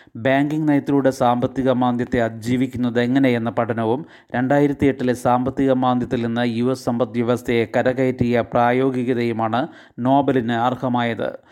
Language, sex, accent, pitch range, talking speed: Malayalam, male, native, 125-135 Hz, 100 wpm